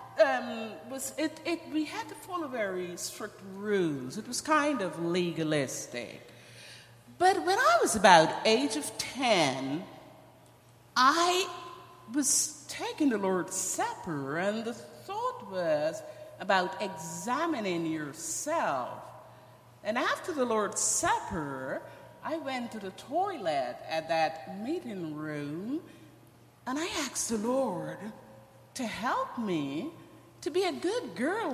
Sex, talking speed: female, 120 wpm